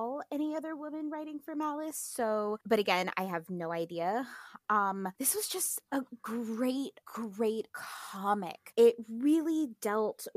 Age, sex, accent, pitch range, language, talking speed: 20-39, female, American, 190-240 Hz, English, 140 wpm